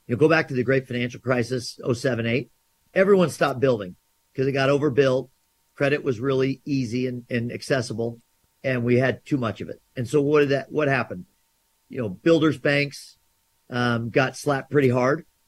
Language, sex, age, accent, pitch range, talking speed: English, male, 40-59, American, 125-155 Hz, 180 wpm